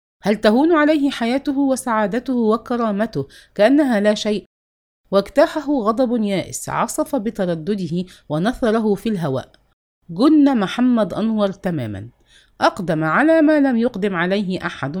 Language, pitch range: English, 155-260 Hz